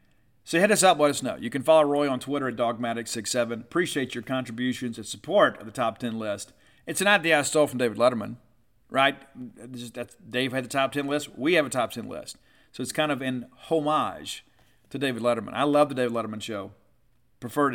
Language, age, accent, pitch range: English, 50-69, American, 120-150 Hz